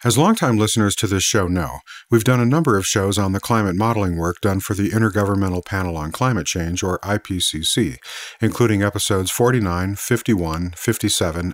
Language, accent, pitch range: English, American, 95-115 Hz